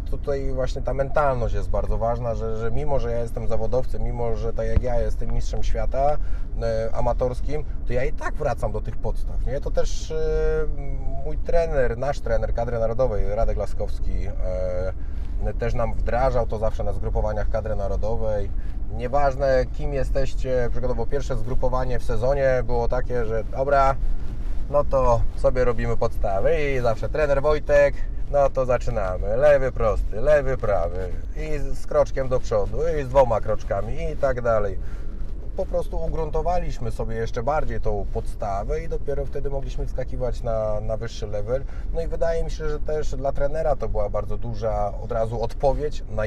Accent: native